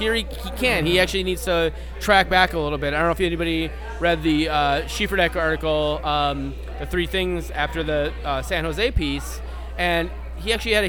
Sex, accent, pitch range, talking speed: male, American, 140-175 Hz, 210 wpm